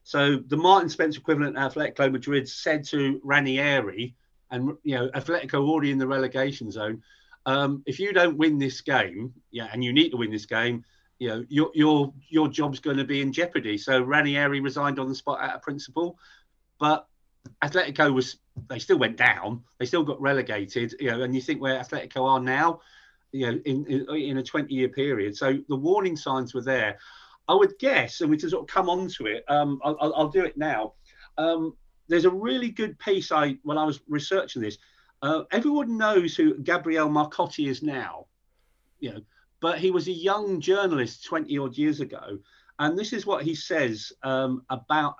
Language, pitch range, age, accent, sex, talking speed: English, 130-175 Hz, 30-49, British, male, 195 wpm